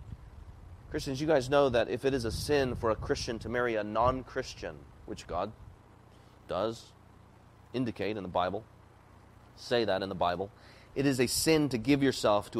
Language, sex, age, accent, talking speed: English, male, 30-49, American, 175 wpm